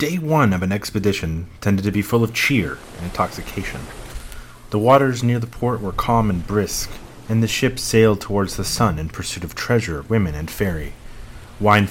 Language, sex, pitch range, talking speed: English, male, 90-115 Hz, 185 wpm